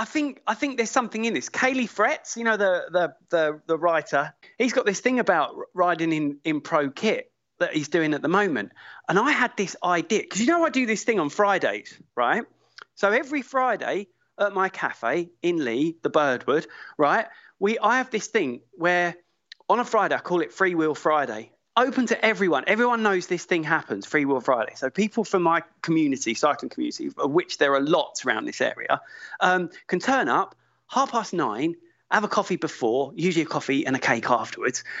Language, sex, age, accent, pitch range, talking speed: English, male, 30-49, British, 160-225 Hz, 200 wpm